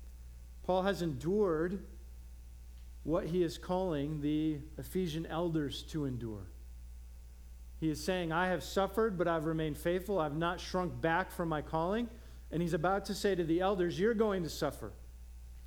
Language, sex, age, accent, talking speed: English, male, 50-69, American, 155 wpm